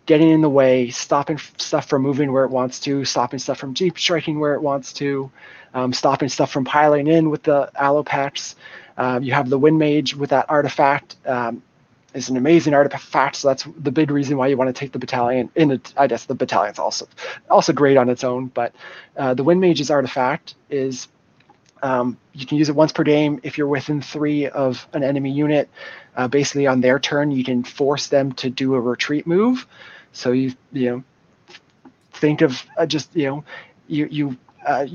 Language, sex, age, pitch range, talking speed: English, male, 20-39, 130-150 Hz, 200 wpm